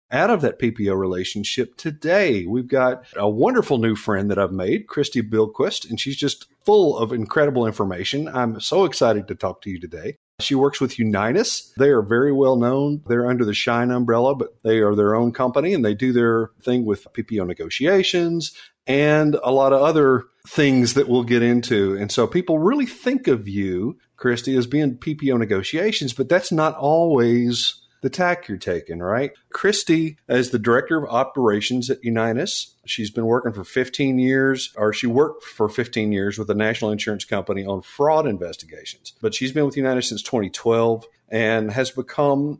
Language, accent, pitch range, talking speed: English, American, 110-140 Hz, 180 wpm